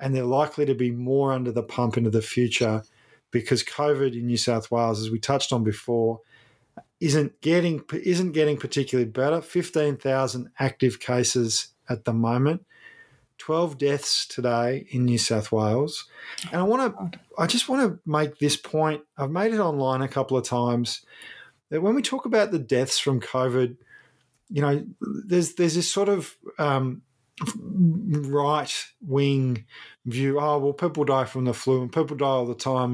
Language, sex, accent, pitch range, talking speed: English, male, Australian, 125-160 Hz, 175 wpm